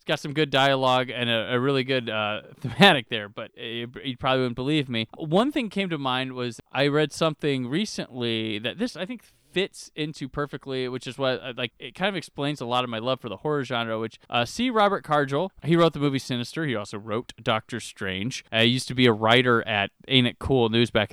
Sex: male